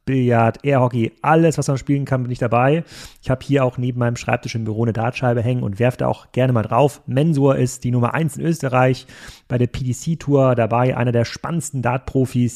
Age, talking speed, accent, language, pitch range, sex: 30-49, 205 wpm, German, German, 120-145 Hz, male